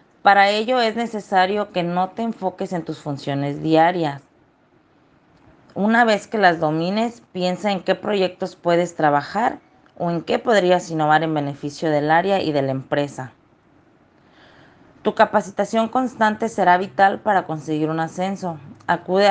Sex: female